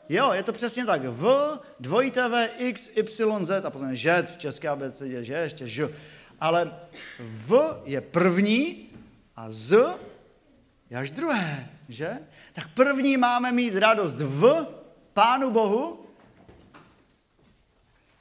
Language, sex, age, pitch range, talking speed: Czech, male, 40-59, 155-215 Hz, 130 wpm